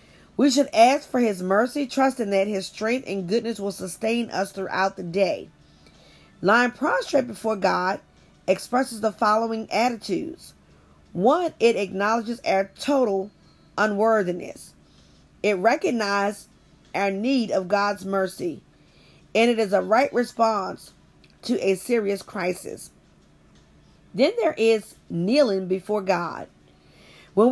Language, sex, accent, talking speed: English, female, American, 120 wpm